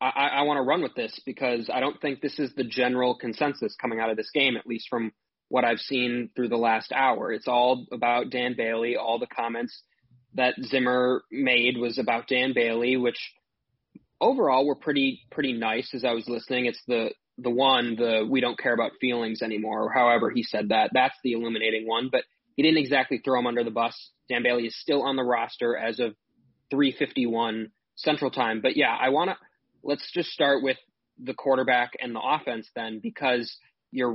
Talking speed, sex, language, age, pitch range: 200 wpm, male, English, 20-39, 120-140 Hz